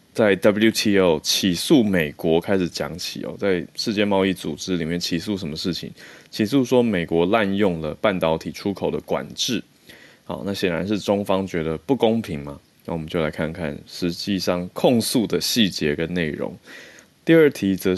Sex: male